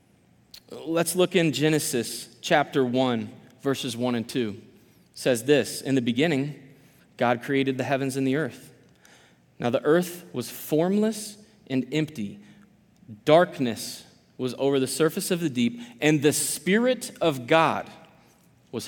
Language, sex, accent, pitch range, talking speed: English, male, American, 120-150 Hz, 140 wpm